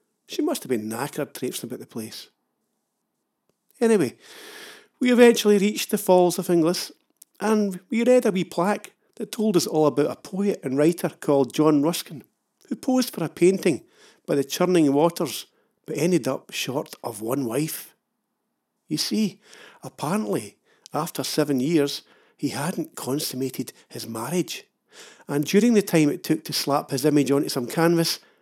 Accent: British